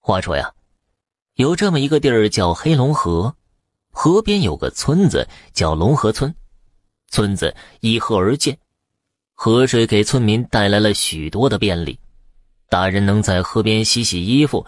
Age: 20-39